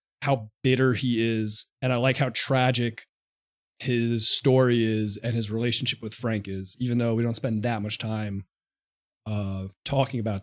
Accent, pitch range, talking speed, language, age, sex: American, 115-130 Hz, 165 wpm, English, 30-49, male